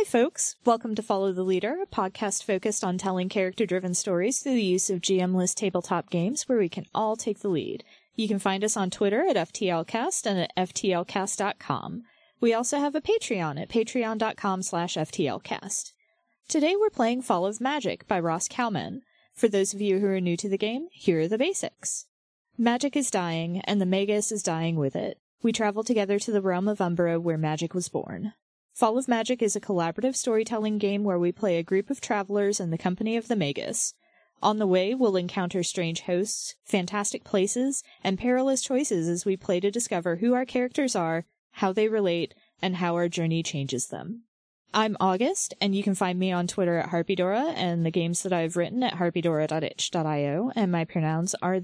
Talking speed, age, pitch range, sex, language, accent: 195 wpm, 20-39, 175-230 Hz, female, English, American